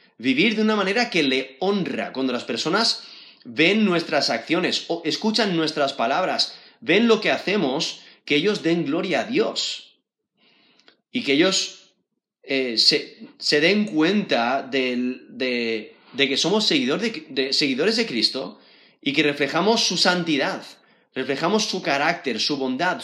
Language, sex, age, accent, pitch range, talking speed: Spanish, male, 30-49, Spanish, 145-215 Hz, 135 wpm